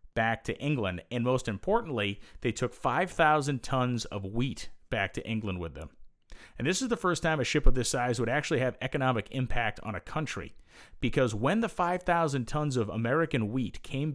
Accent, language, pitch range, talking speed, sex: American, English, 105-140 Hz, 190 wpm, male